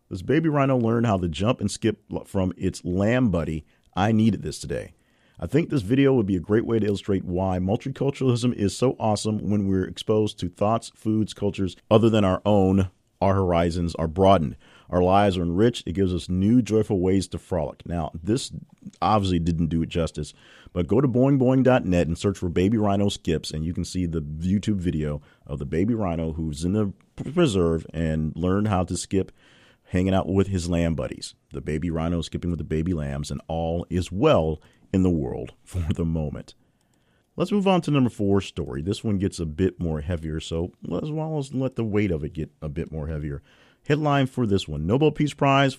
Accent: American